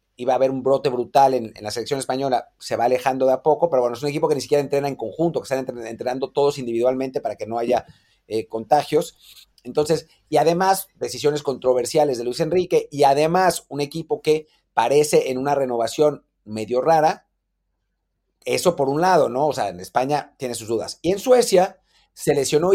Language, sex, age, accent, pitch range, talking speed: Spanish, male, 40-59, Mexican, 130-170 Hz, 200 wpm